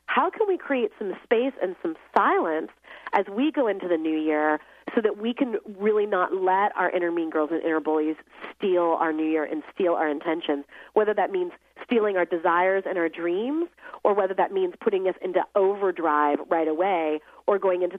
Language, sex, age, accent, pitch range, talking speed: English, female, 30-49, American, 170-235 Hz, 200 wpm